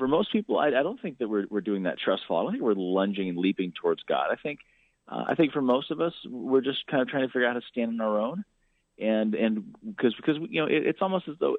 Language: English